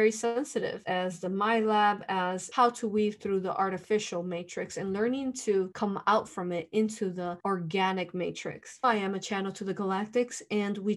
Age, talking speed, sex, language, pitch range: 20-39, 185 wpm, female, English, 185-215 Hz